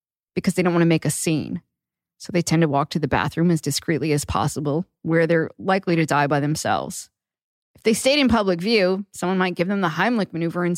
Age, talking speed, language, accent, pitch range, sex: 20-39, 230 wpm, English, American, 160-195 Hz, female